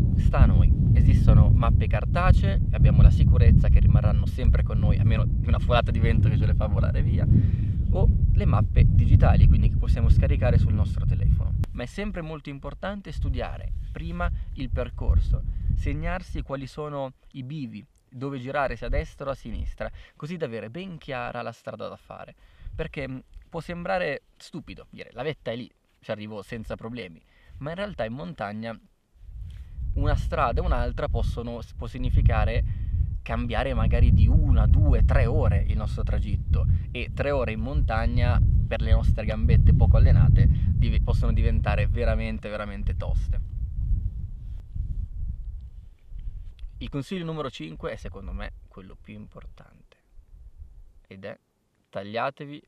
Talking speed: 150 wpm